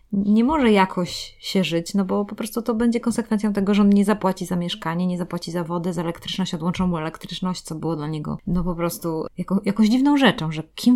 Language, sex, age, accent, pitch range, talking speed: Polish, female, 20-39, native, 170-205 Hz, 220 wpm